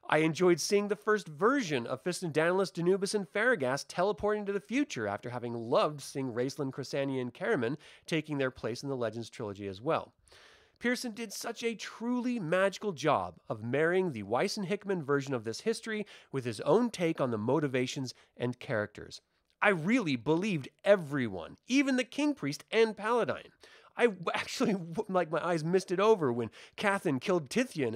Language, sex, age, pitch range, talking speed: English, male, 30-49, 135-210 Hz, 175 wpm